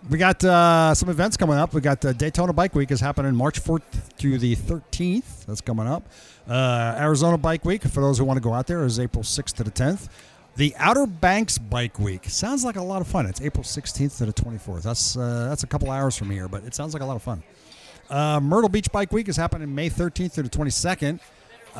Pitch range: 110-155 Hz